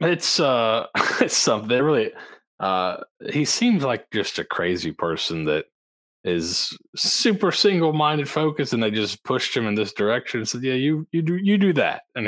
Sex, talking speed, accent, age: male, 180 wpm, American, 20-39